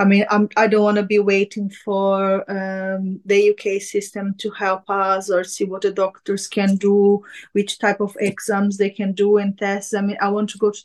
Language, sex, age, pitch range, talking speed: English, female, 20-39, 195-220 Hz, 215 wpm